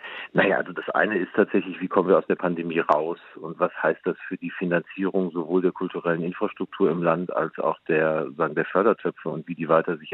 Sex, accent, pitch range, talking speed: male, German, 85-95 Hz, 220 wpm